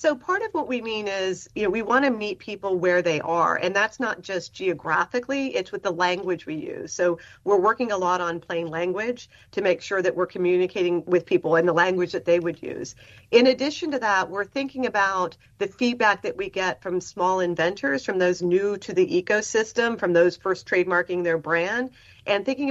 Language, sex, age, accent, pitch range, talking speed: English, female, 40-59, American, 180-235 Hz, 210 wpm